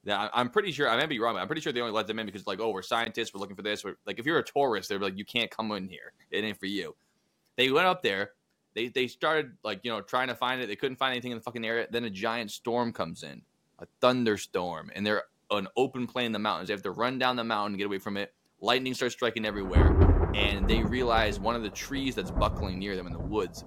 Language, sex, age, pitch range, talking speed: English, male, 20-39, 100-125 Hz, 285 wpm